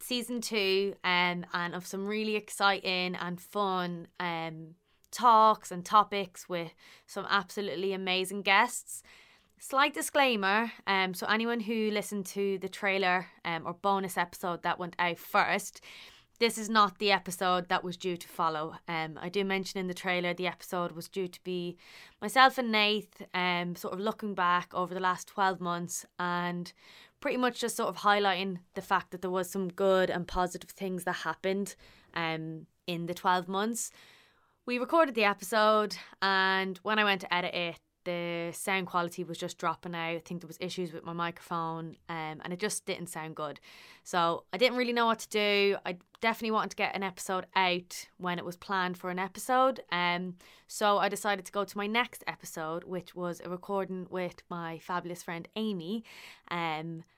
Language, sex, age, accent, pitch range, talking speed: English, female, 20-39, Irish, 175-200 Hz, 180 wpm